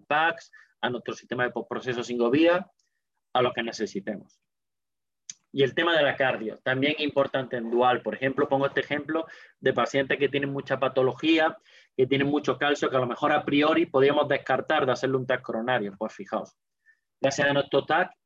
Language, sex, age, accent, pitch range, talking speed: Spanish, male, 30-49, Spanish, 125-145 Hz, 180 wpm